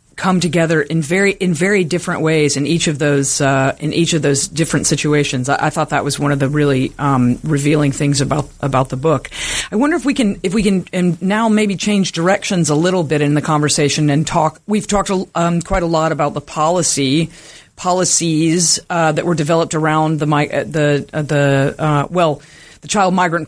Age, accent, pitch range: 40-59, American, 150-180 Hz